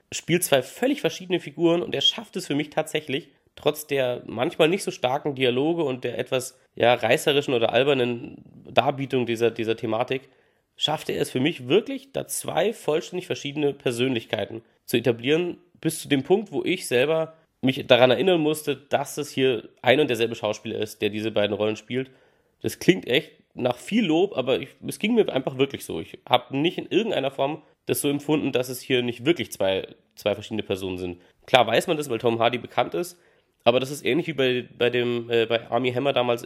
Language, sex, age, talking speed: German, male, 30-49, 195 wpm